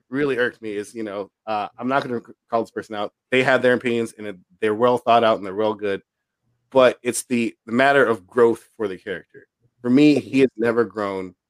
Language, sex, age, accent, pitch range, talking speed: English, male, 30-49, American, 115-150 Hz, 230 wpm